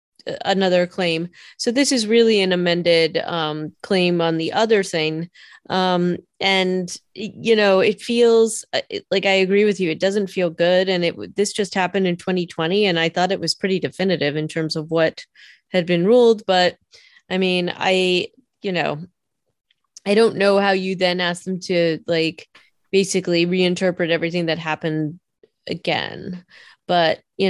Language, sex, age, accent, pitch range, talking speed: English, female, 20-39, American, 165-190 Hz, 160 wpm